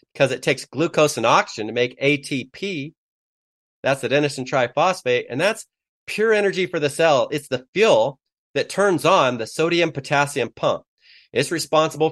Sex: male